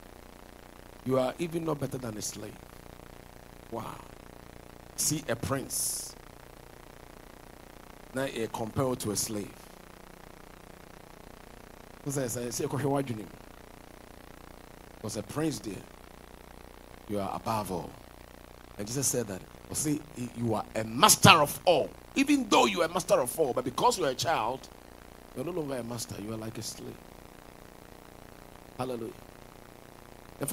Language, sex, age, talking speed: English, male, 50-69, 120 wpm